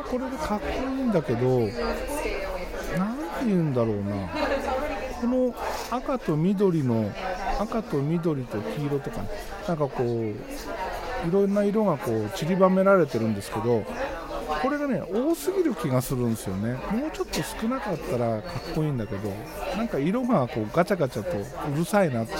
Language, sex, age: Japanese, male, 50-69